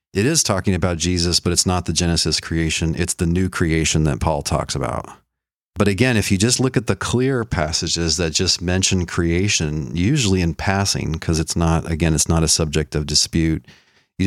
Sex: male